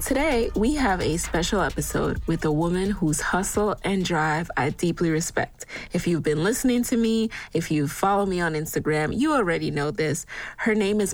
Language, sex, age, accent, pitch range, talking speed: English, female, 20-39, American, 150-190 Hz, 190 wpm